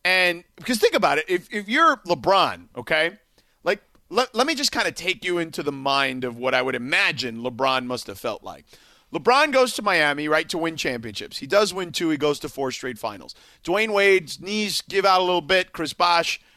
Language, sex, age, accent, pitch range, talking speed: English, male, 40-59, American, 150-215 Hz, 215 wpm